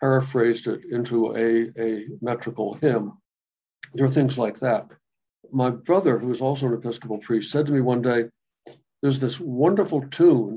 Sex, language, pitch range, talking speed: male, English, 120-145 Hz, 165 wpm